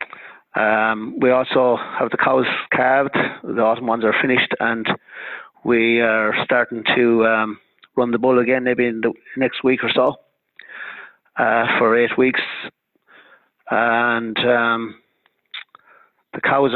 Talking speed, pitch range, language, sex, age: 135 wpm, 120-135 Hz, English, male, 30-49